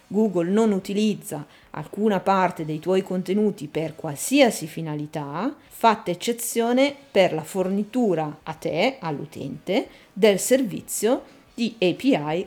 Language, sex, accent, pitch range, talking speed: Italian, female, native, 160-215 Hz, 110 wpm